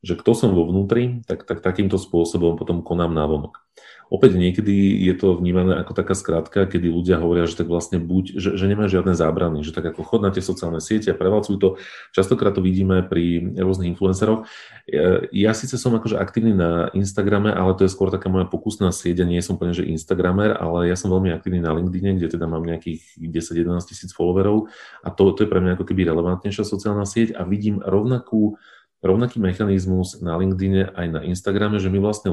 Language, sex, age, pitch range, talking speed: Slovak, male, 30-49, 85-100 Hz, 200 wpm